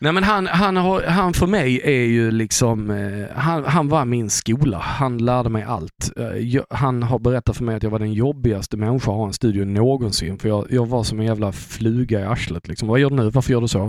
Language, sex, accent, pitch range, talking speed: Swedish, male, native, 110-145 Hz, 245 wpm